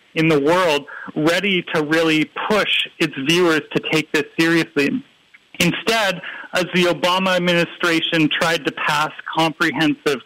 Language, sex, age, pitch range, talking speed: English, male, 40-59, 160-185 Hz, 130 wpm